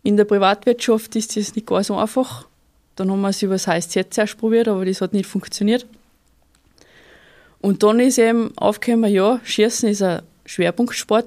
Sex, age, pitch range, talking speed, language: female, 20-39, 195-230 Hz, 175 wpm, German